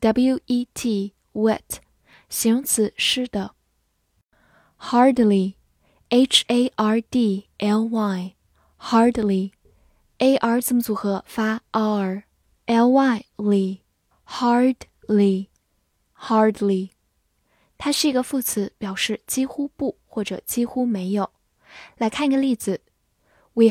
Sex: female